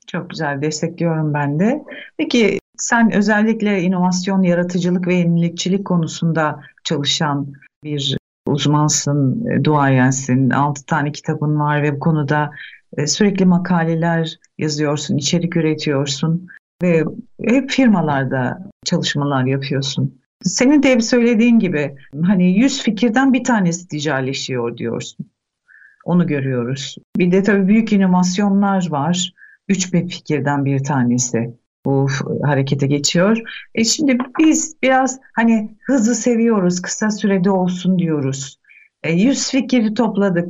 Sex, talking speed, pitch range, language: female, 115 wpm, 150-230 Hz, Turkish